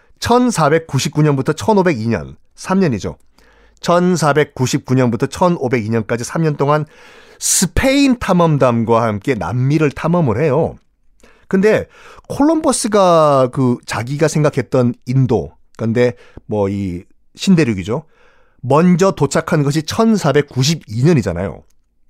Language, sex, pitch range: Korean, male, 120-195 Hz